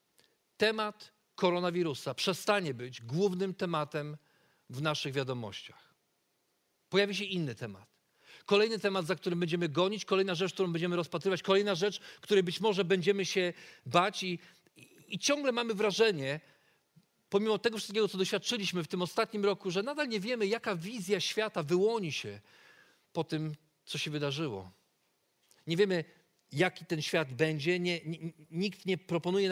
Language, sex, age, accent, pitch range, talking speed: Polish, male, 40-59, native, 165-205 Hz, 140 wpm